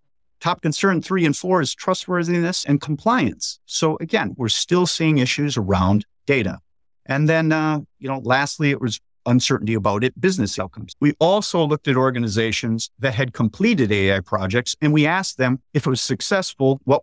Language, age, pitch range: English, 50-69, 110-150 Hz